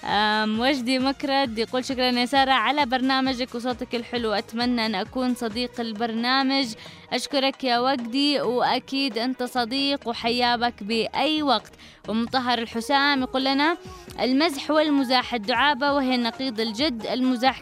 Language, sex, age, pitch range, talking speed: English, female, 20-39, 225-265 Hz, 125 wpm